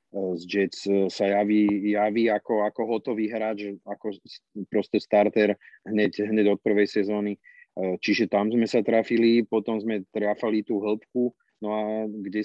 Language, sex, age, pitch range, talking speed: Slovak, male, 40-59, 100-105 Hz, 145 wpm